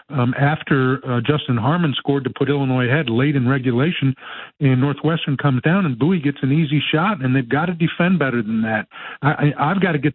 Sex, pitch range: male, 130-150 Hz